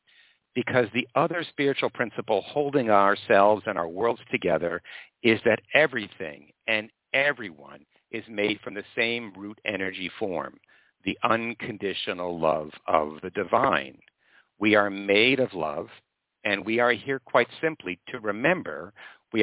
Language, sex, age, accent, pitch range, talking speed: English, male, 60-79, American, 95-125 Hz, 135 wpm